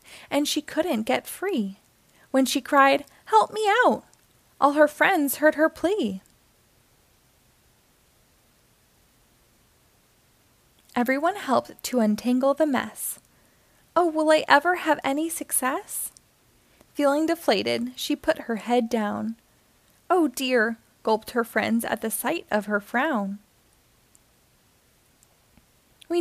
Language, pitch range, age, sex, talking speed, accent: English, 230-310 Hz, 20-39, female, 110 wpm, American